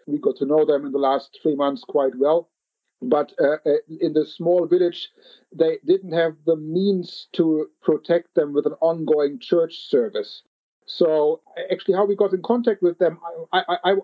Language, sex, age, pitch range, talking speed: English, male, 50-69, 155-190 Hz, 175 wpm